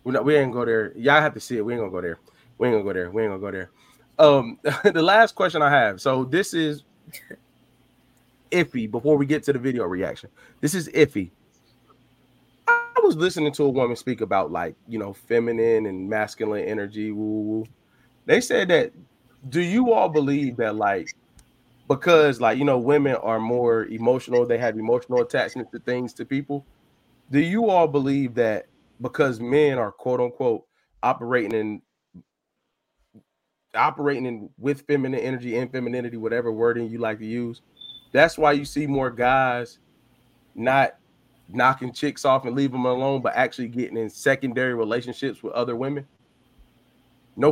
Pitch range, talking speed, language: 120-145 Hz, 170 wpm, English